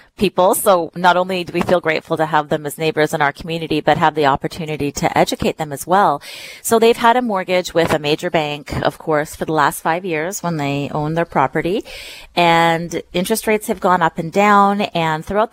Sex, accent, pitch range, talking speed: female, American, 150-190 Hz, 215 wpm